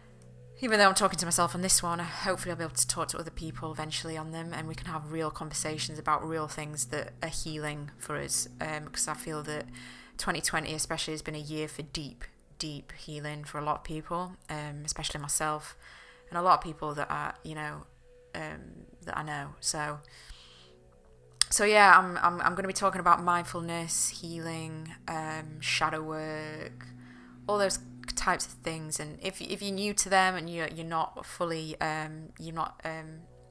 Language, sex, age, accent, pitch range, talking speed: English, female, 20-39, British, 150-170 Hz, 195 wpm